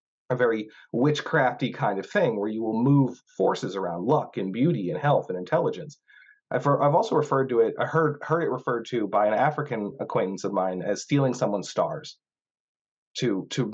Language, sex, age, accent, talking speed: English, male, 30-49, American, 190 wpm